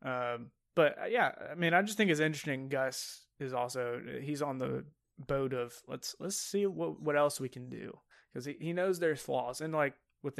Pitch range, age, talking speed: 130-150 Hz, 20-39, 215 wpm